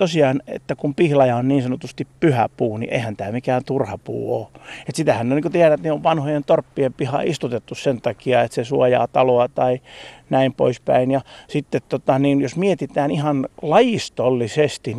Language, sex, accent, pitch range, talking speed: Finnish, male, native, 120-145 Hz, 185 wpm